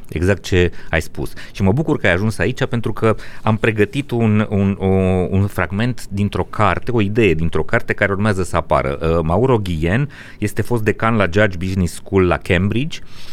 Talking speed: 190 wpm